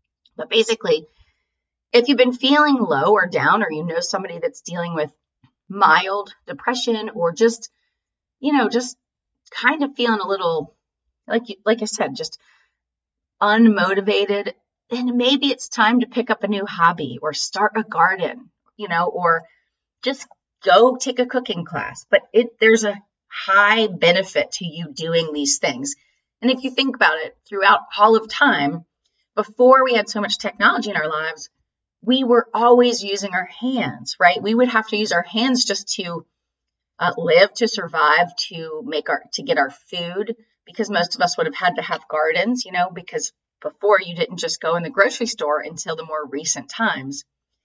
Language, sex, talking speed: English, female, 180 wpm